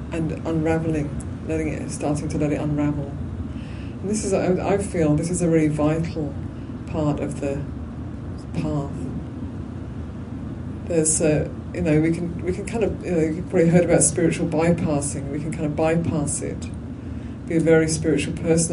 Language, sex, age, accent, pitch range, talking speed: English, female, 40-59, British, 120-165 Hz, 165 wpm